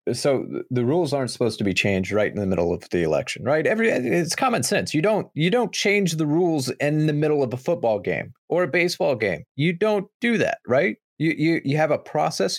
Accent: American